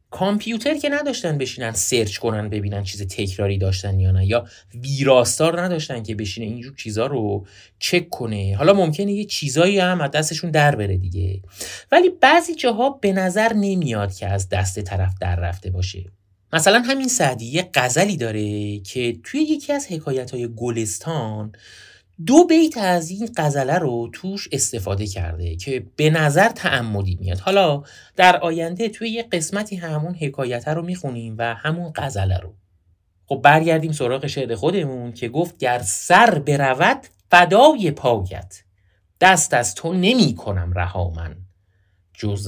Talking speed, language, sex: 145 wpm, Persian, male